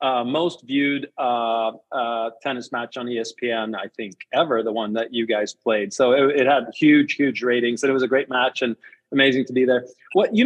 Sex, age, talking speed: male, 30-49, 220 wpm